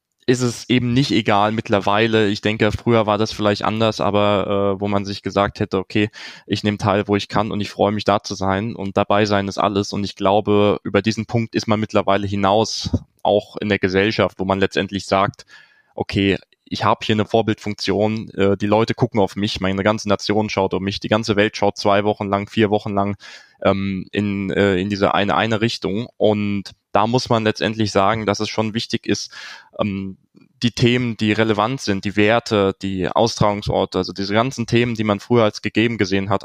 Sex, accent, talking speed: male, German, 205 wpm